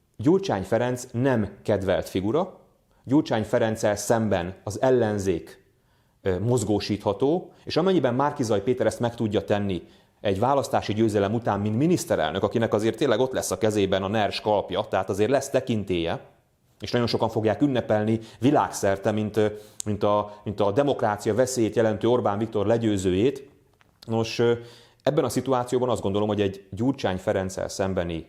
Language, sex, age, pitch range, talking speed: Hungarian, male, 30-49, 100-125 Hz, 140 wpm